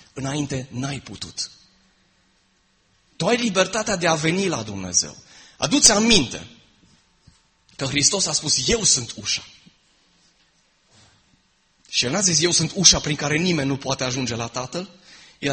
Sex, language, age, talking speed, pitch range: male, Romanian, 30-49, 145 wpm, 120-175 Hz